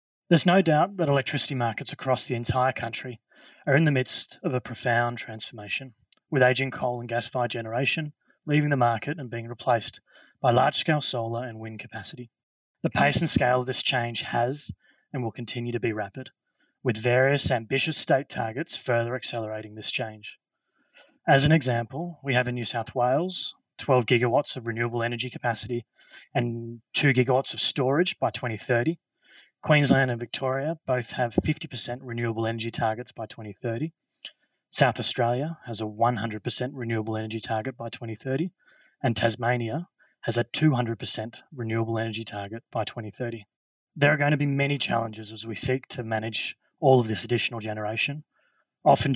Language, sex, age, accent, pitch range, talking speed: English, male, 20-39, Australian, 115-135 Hz, 160 wpm